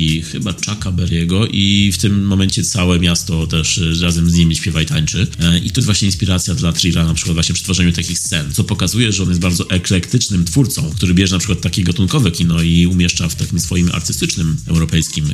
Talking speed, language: 205 wpm, Polish